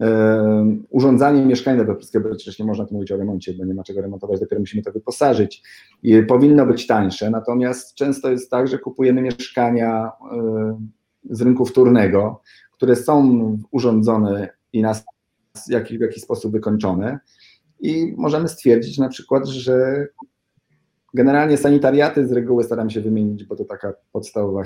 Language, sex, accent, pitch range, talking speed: Polish, male, native, 105-125 Hz, 140 wpm